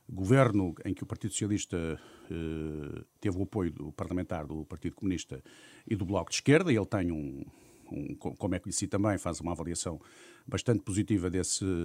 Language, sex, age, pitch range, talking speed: Portuguese, male, 50-69, 90-115 Hz, 175 wpm